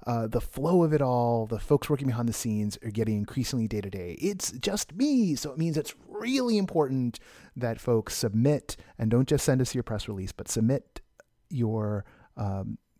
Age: 30-49